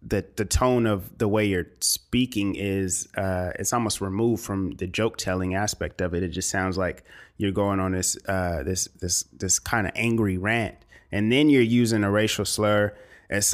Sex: male